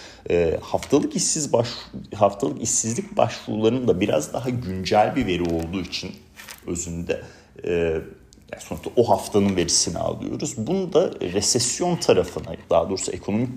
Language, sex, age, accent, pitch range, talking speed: Turkish, male, 40-59, native, 95-130 Hz, 130 wpm